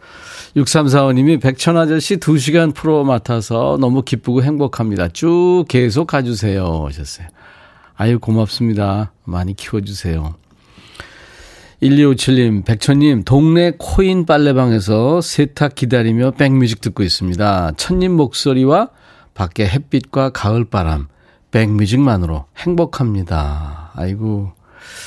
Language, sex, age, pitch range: Korean, male, 40-59, 100-150 Hz